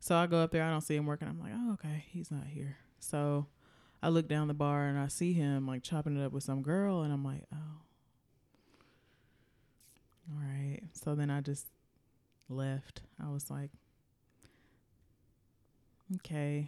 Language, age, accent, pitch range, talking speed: English, 20-39, American, 140-165 Hz, 175 wpm